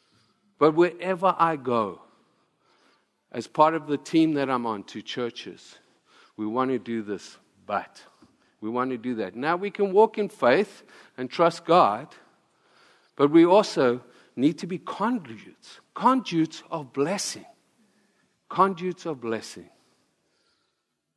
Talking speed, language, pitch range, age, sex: 135 wpm, English, 105-145 Hz, 50-69, male